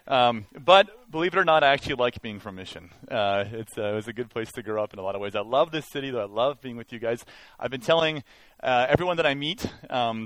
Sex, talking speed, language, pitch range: male, 280 wpm, English, 110-145 Hz